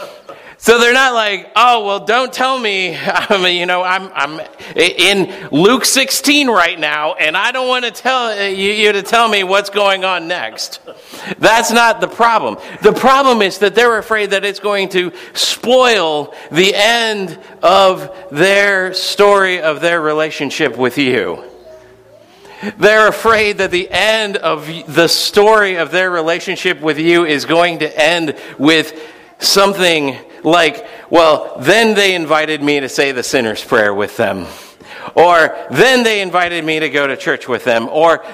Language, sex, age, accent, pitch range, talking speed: English, male, 50-69, American, 150-210 Hz, 160 wpm